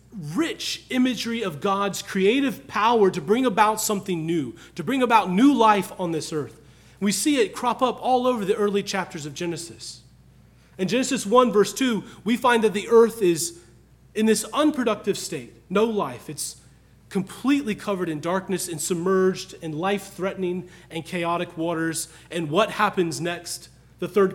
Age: 30-49